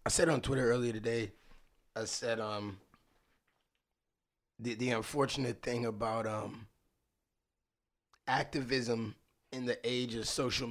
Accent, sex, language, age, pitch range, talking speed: American, male, English, 20-39, 120-150 Hz, 120 wpm